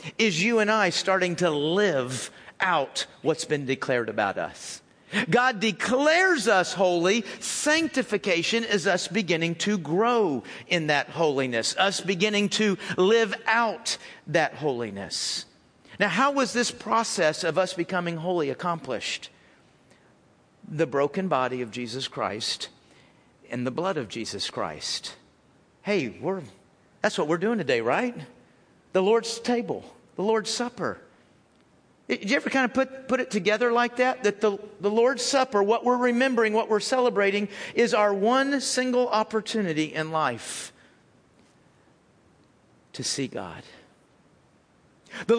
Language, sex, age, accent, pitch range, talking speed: English, male, 50-69, American, 175-240 Hz, 135 wpm